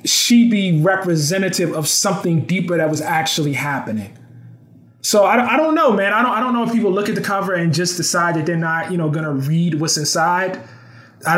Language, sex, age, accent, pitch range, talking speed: English, male, 20-39, American, 155-190 Hz, 210 wpm